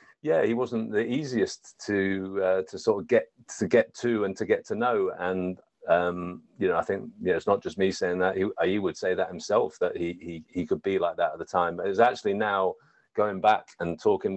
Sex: male